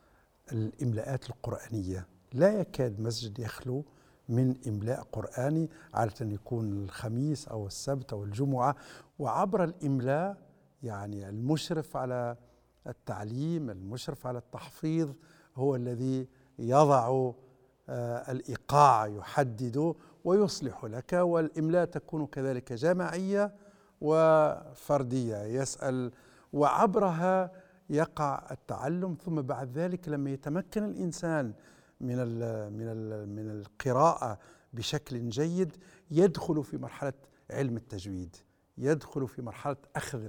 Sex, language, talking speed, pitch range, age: male, Arabic, 95 wpm, 120-155 Hz, 60-79